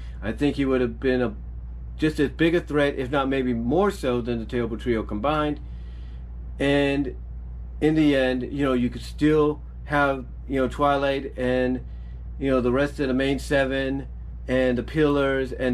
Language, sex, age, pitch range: English, male, 40-59, 115-145 Hz